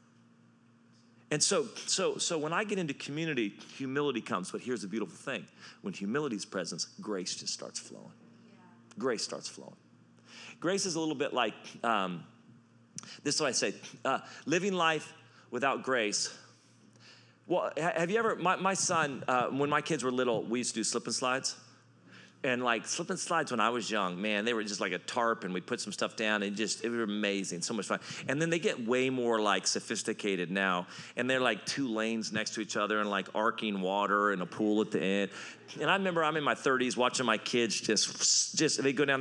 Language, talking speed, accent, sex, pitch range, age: English, 210 wpm, American, male, 110-150 Hz, 40-59